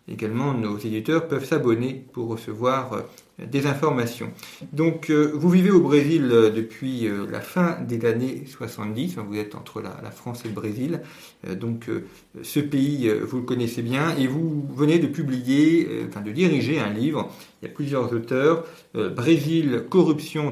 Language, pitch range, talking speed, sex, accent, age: French, 120-155 Hz, 175 wpm, male, French, 40-59